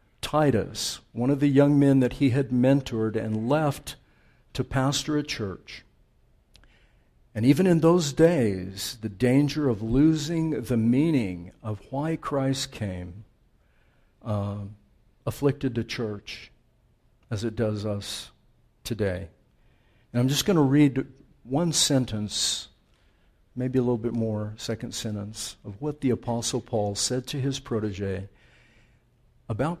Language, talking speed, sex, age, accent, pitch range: English, 130 wpm, male, 50-69, American, 110-145 Hz